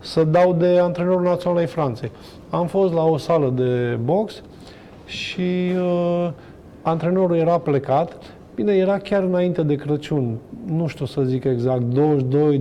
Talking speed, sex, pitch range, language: 150 wpm, male, 145-180 Hz, Romanian